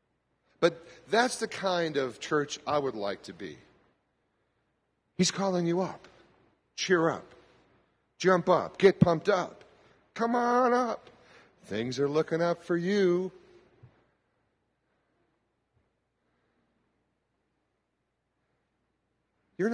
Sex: male